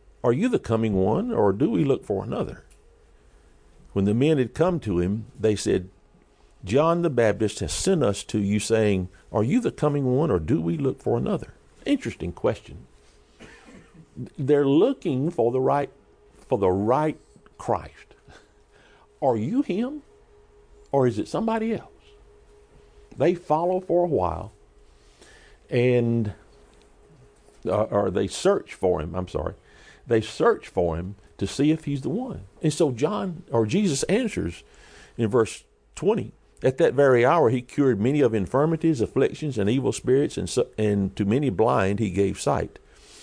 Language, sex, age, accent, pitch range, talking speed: English, male, 50-69, American, 95-150 Hz, 155 wpm